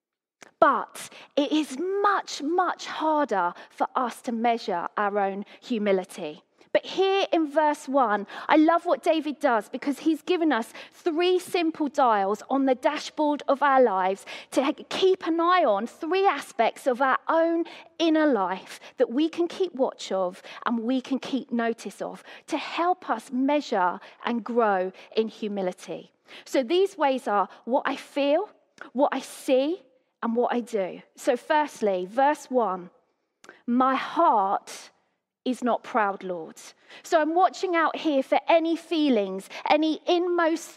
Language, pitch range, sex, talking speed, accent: English, 235-325 Hz, female, 150 wpm, British